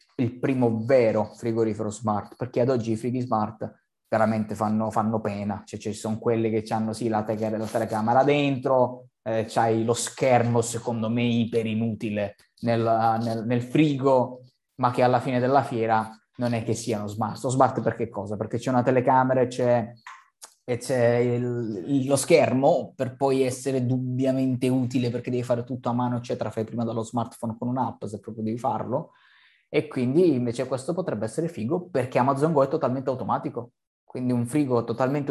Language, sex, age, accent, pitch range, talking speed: Italian, male, 20-39, native, 115-130 Hz, 180 wpm